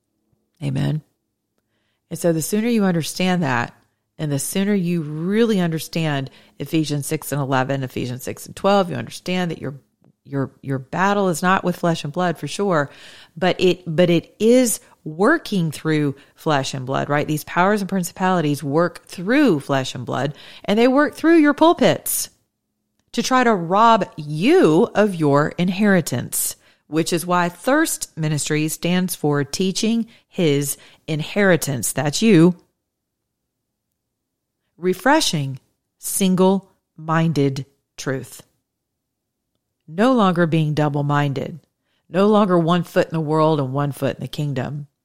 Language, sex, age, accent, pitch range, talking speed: English, female, 40-59, American, 140-185 Hz, 135 wpm